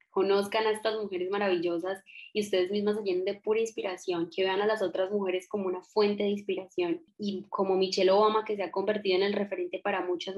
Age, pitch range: 10-29, 190-220 Hz